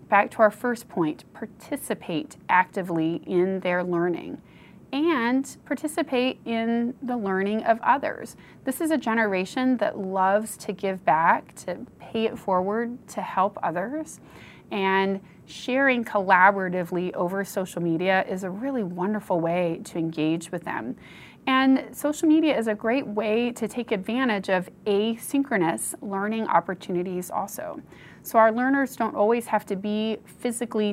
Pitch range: 185-240 Hz